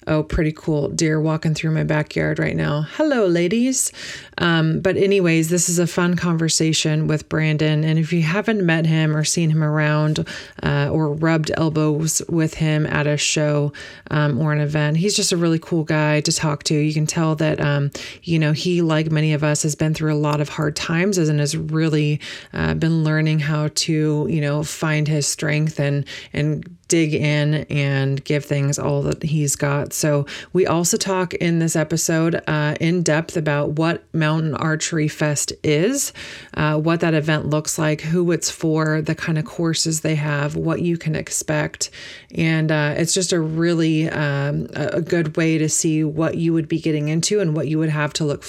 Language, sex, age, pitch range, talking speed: English, female, 30-49, 150-165 Hz, 195 wpm